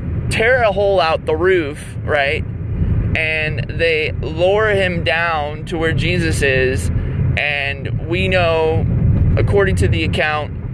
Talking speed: 130 wpm